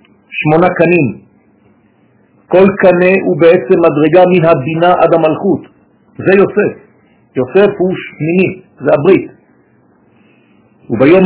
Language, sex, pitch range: French, male, 165-195 Hz